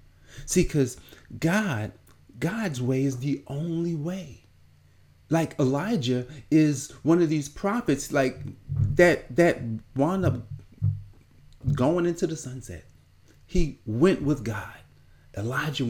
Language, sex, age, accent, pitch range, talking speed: English, male, 40-59, American, 90-140 Hz, 115 wpm